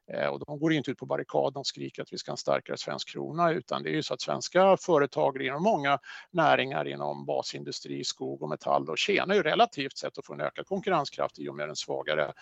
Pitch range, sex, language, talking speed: 135-170 Hz, male, Swedish, 225 wpm